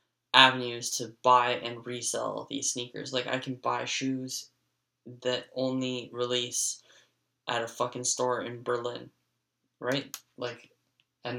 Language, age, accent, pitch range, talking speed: English, 10-29, American, 125-145 Hz, 125 wpm